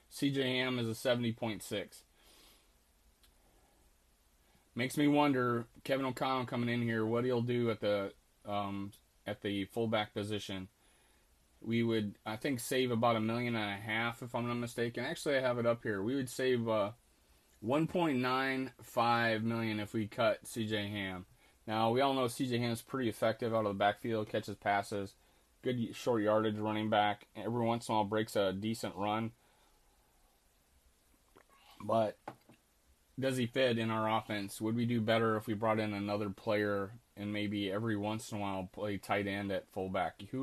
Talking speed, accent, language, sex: 180 wpm, American, English, male